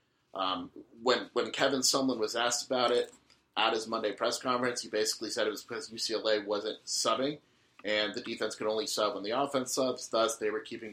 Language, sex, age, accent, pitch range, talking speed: English, male, 30-49, American, 100-120 Hz, 205 wpm